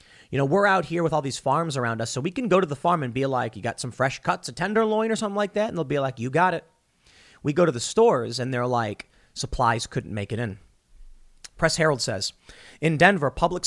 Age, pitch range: 30-49, 135-195 Hz